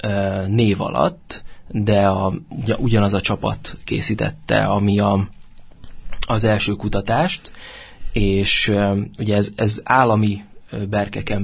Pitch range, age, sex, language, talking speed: 100-120 Hz, 20-39, male, Hungarian, 100 wpm